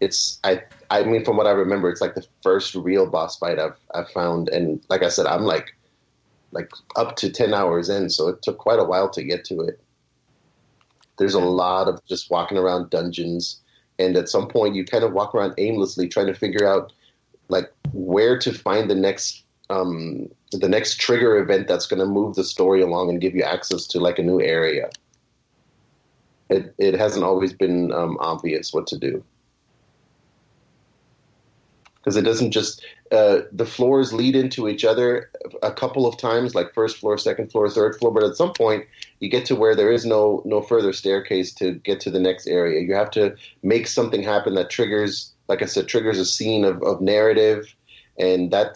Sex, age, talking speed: male, 30-49, 195 wpm